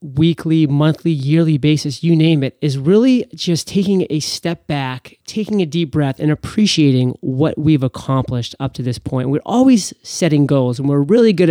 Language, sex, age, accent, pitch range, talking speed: English, male, 30-49, American, 130-165 Hz, 180 wpm